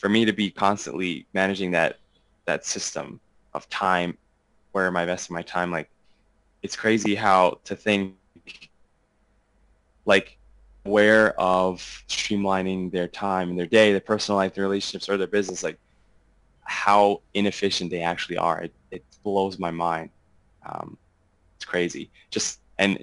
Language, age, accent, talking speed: English, 20-39, American, 145 wpm